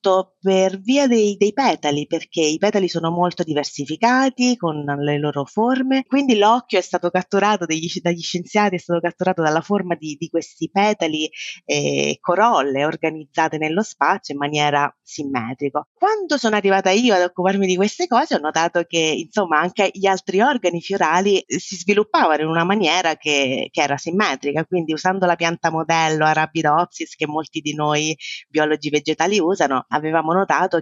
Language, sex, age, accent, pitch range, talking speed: Italian, female, 30-49, native, 155-195 Hz, 160 wpm